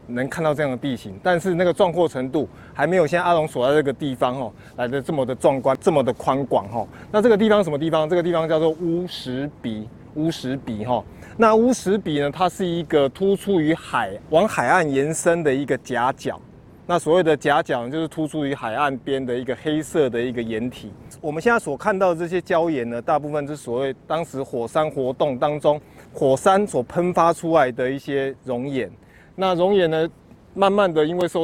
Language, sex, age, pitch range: Chinese, male, 20-39, 130-175 Hz